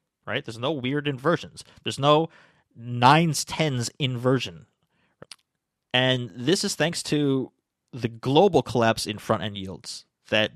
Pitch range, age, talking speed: 105-130 Hz, 20-39, 125 wpm